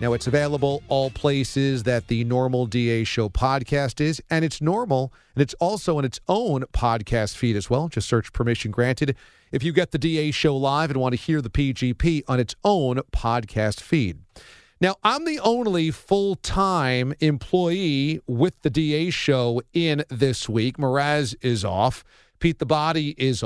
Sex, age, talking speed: male, 40-59, 175 wpm